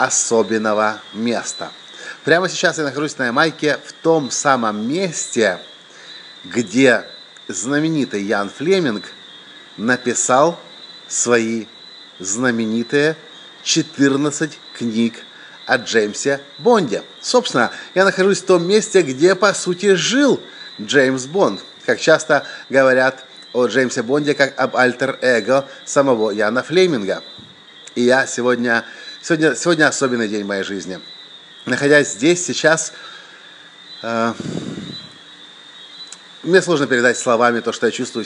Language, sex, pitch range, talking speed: English, male, 125-160 Hz, 110 wpm